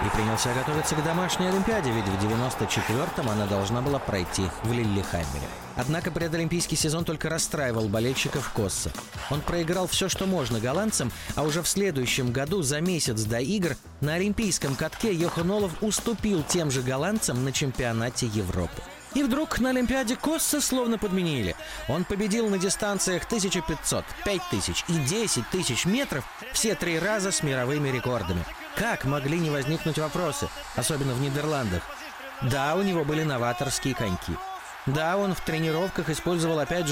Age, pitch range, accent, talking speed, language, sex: 30-49, 125-190 Hz, native, 145 wpm, Russian, male